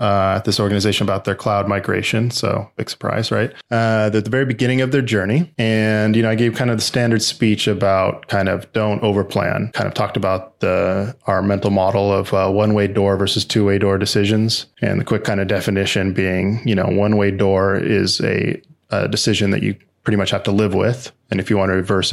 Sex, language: male, English